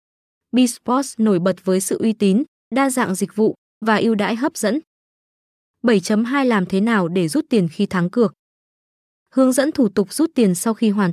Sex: female